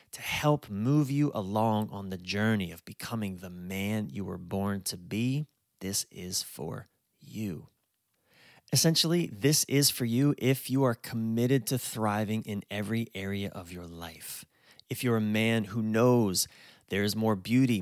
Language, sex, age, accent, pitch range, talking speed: English, male, 30-49, American, 100-125 Hz, 160 wpm